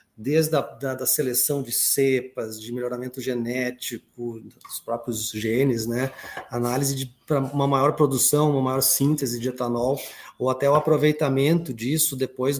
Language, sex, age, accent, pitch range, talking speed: Portuguese, male, 30-49, Brazilian, 125-150 Hz, 135 wpm